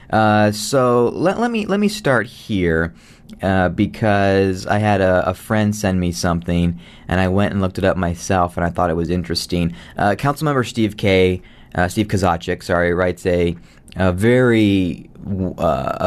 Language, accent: English, American